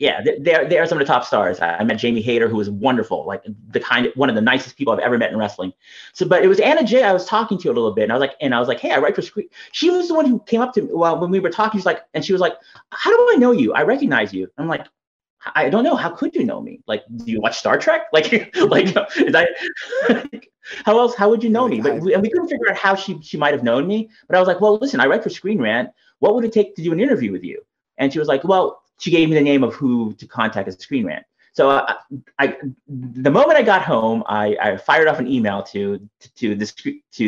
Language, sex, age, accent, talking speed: English, male, 30-49, American, 295 wpm